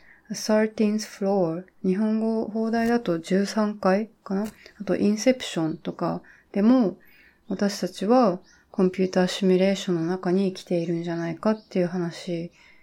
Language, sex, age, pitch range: Japanese, female, 20-39, 175-215 Hz